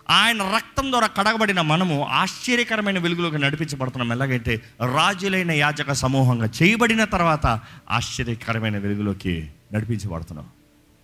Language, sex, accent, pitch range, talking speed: Telugu, male, native, 130-200 Hz, 90 wpm